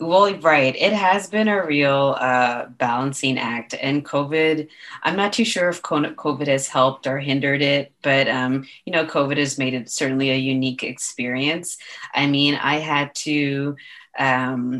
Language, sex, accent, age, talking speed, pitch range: English, female, American, 30-49, 165 wpm, 130-145 Hz